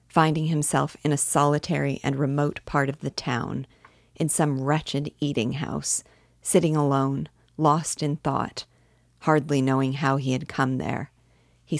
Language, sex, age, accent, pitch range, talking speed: English, female, 50-69, American, 130-155 Hz, 140 wpm